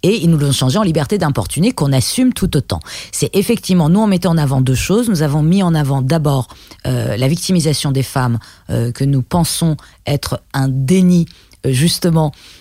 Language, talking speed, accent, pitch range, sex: French, 190 wpm, French, 125-175 Hz, female